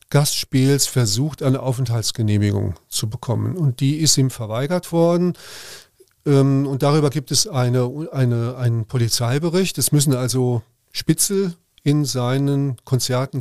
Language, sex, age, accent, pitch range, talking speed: German, male, 40-59, German, 125-155 Hz, 110 wpm